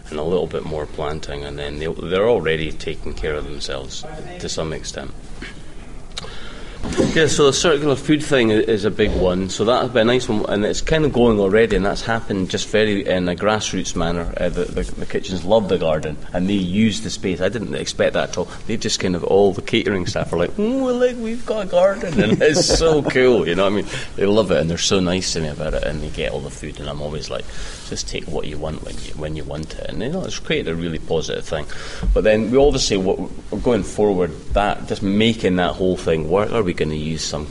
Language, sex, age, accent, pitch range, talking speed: English, male, 30-49, British, 80-110 Hz, 245 wpm